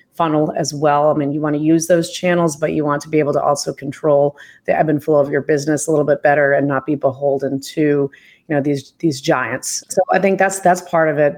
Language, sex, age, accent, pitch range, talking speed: English, female, 30-49, American, 150-175 Hz, 260 wpm